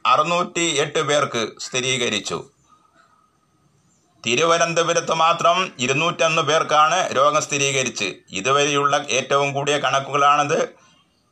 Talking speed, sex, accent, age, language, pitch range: 75 wpm, male, native, 30-49, Malayalam, 130-170 Hz